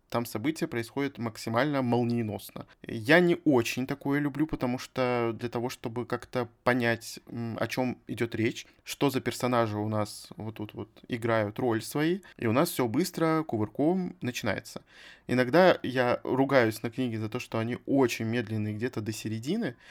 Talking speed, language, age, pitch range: 160 wpm, Russian, 20-39, 115-140 Hz